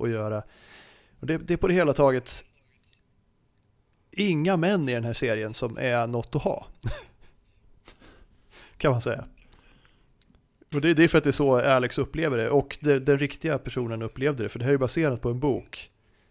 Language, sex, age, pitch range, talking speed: Swedish, male, 30-49, 110-140 Hz, 190 wpm